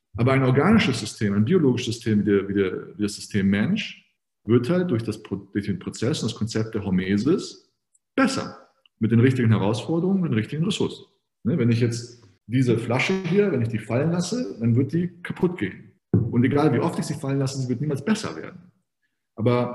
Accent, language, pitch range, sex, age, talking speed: German, German, 115-150 Hz, male, 40-59, 200 wpm